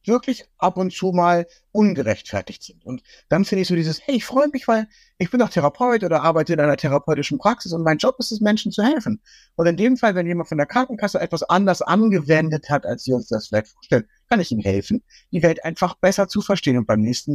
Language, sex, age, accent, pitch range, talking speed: German, male, 60-79, German, 120-185 Hz, 235 wpm